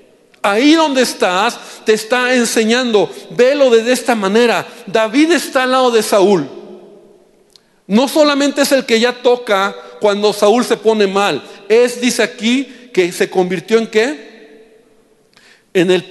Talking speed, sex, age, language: 145 wpm, male, 50-69, Spanish